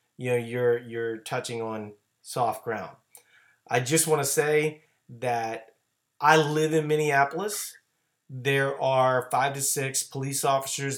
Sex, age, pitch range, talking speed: male, 30-49, 120-165 Hz, 135 wpm